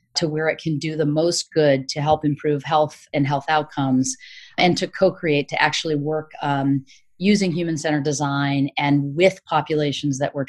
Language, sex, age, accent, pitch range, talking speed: English, female, 30-49, American, 145-170 Hz, 170 wpm